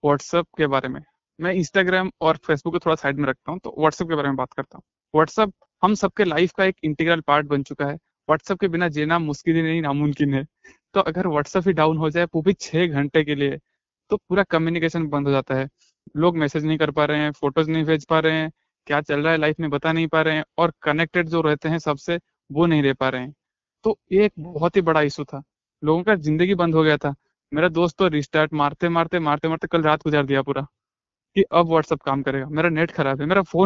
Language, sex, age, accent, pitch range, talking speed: Hindi, male, 20-39, native, 150-180 Hz, 200 wpm